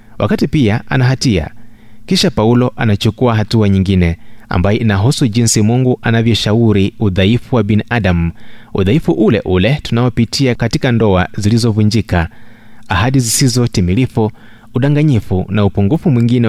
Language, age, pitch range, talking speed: Swahili, 30-49, 100-120 Hz, 110 wpm